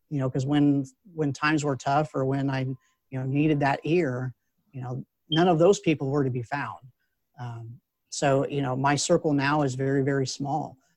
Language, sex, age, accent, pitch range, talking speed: English, male, 40-59, American, 135-160 Hz, 200 wpm